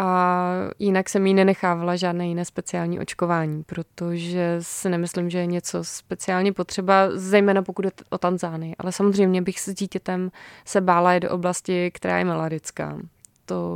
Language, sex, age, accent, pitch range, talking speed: Czech, female, 20-39, native, 175-195 Hz, 155 wpm